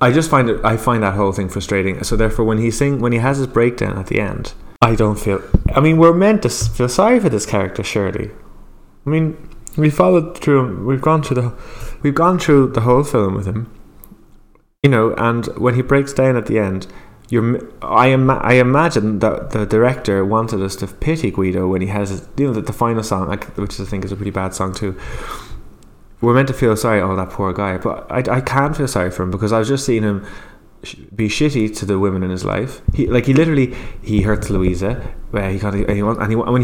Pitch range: 95-125 Hz